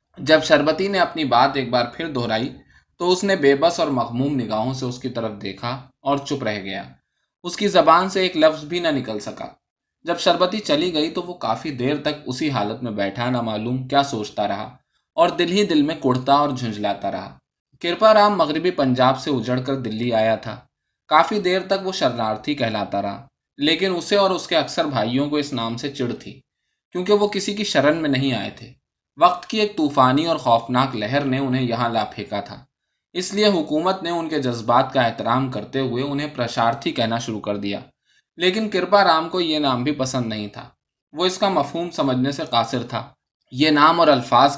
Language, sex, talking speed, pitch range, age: Urdu, male, 205 wpm, 120-170 Hz, 20-39